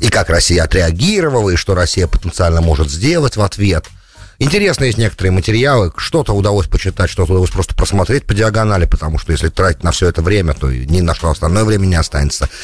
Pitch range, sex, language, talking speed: 90-115 Hz, male, English, 195 wpm